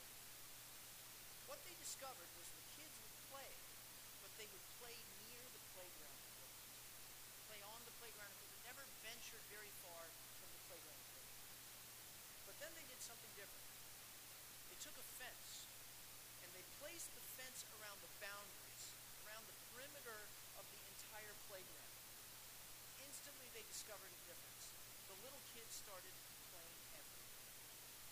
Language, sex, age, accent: English, male, 50-69, American